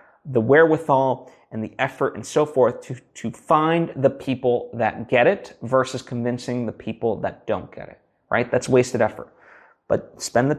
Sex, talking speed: male, 175 wpm